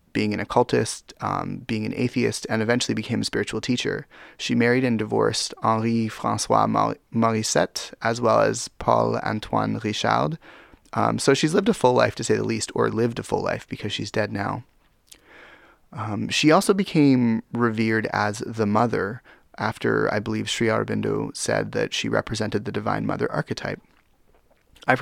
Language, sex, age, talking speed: English, male, 20-39, 160 wpm